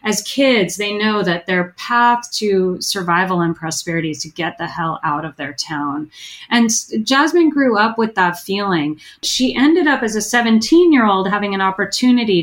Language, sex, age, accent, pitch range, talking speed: English, female, 30-49, American, 175-230 Hz, 175 wpm